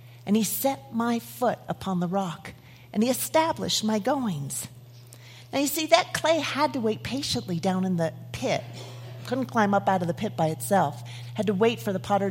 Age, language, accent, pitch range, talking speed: 40-59, English, American, 120-200 Hz, 200 wpm